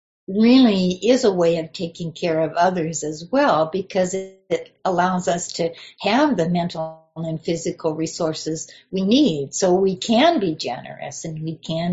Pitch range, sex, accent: 165-210 Hz, female, American